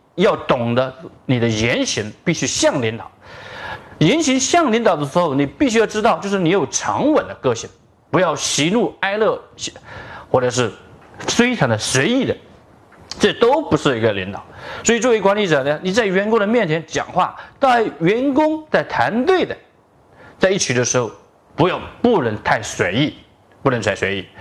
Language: Chinese